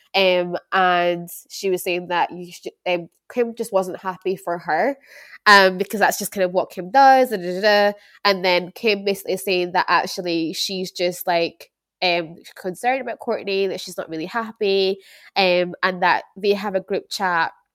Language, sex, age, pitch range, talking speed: English, female, 10-29, 185-250 Hz, 175 wpm